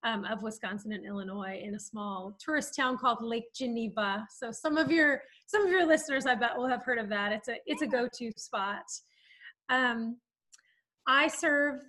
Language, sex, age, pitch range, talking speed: English, female, 30-49, 225-270 Hz, 185 wpm